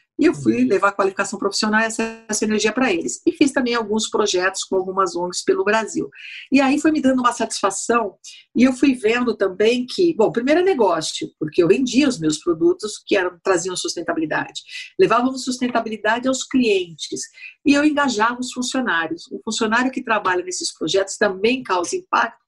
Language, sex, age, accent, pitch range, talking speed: English, female, 50-69, Brazilian, 195-250 Hz, 185 wpm